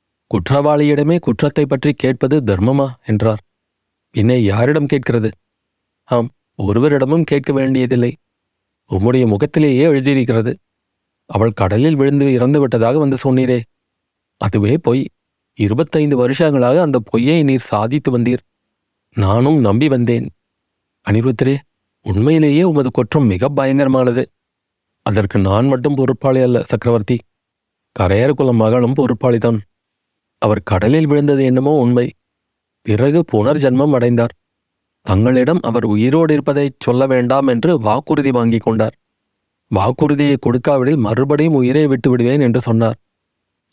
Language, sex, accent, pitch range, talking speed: Tamil, male, native, 110-140 Hz, 105 wpm